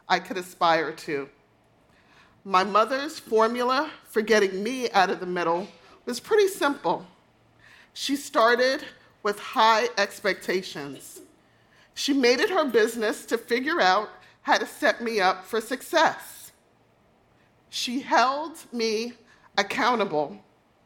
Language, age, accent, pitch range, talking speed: English, 40-59, American, 200-265 Hz, 120 wpm